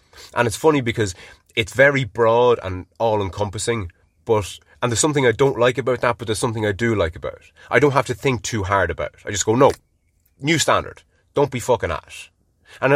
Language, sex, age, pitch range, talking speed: English, male, 30-49, 95-125 Hz, 220 wpm